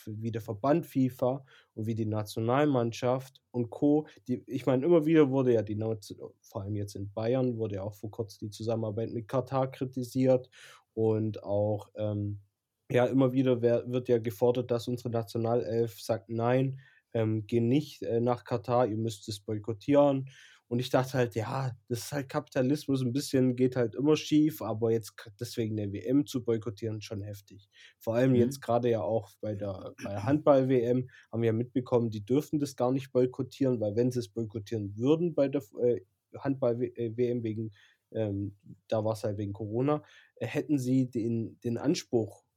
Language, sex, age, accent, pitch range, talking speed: German, male, 20-39, German, 110-130 Hz, 175 wpm